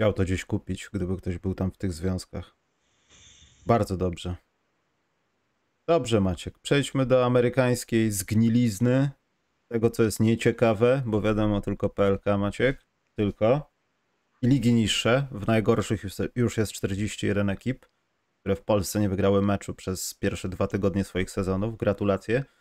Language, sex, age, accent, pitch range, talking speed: Polish, male, 30-49, native, 100-120 Hz, 135 wpm